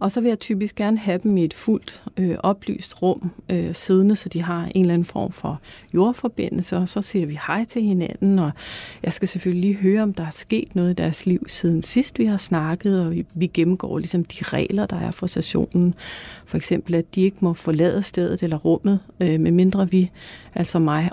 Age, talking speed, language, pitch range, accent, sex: 40-59, 220 wpm, Danish, 170-205 Hz, native, female